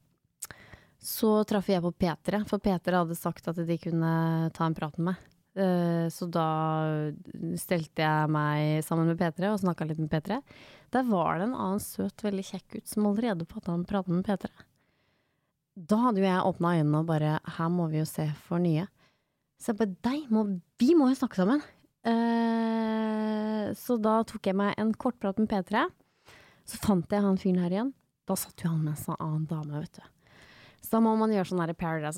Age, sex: 20-39, female